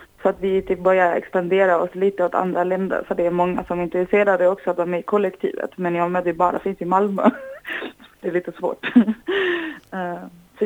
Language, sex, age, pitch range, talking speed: Swedish, female, 20-39, 170-190 Hz, 205 wpm